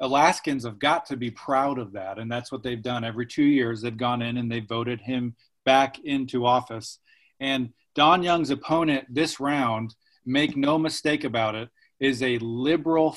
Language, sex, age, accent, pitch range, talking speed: English, male, 40-59, American, 125-160 Hz, 180 wpm